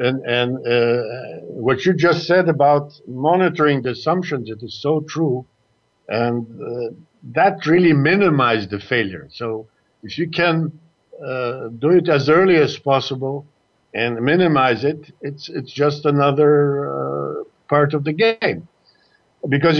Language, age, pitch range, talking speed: English, 50-69, 120-155 Hz, 140 wpm